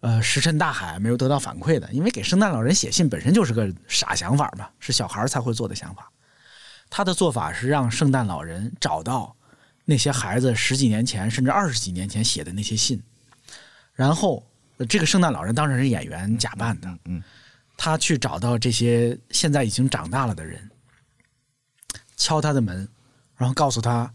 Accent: native